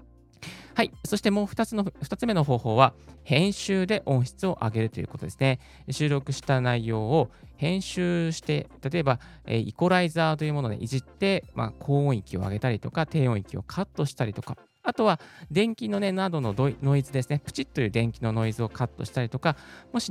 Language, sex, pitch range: Japanese, male, 115-165 Hz